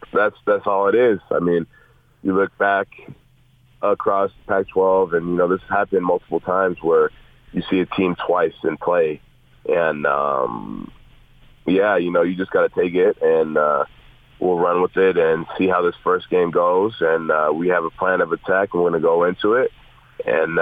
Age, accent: 30-49, American